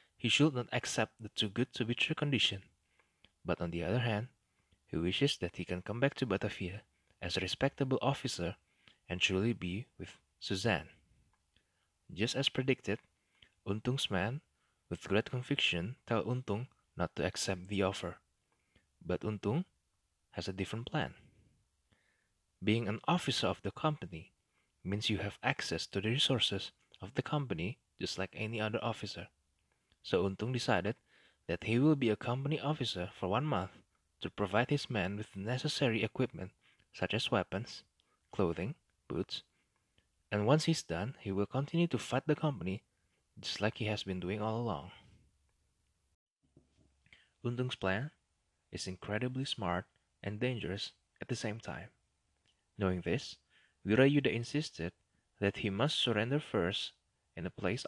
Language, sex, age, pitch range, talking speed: English, male, 20-39, 95-125 Hz, 150 wpm